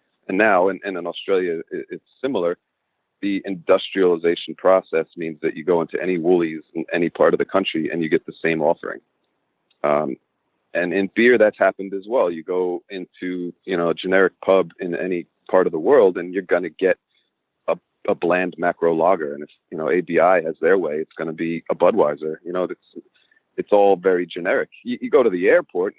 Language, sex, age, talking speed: English, male, 40-59, 205 wpm